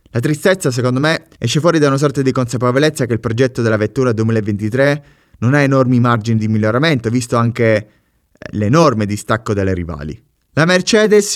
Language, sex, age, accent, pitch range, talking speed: Italian, male, 30-49, native, 110-145 Hz, 165 wpm